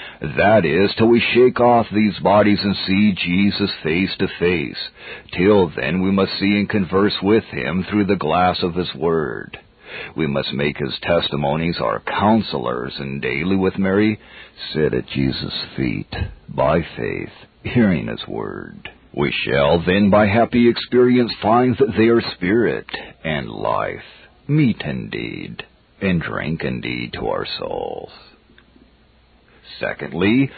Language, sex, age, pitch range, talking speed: English, male, 50-69, 90-115 Hz, 140 wpm